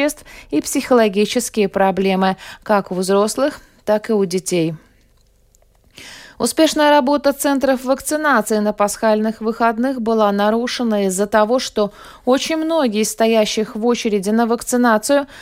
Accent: native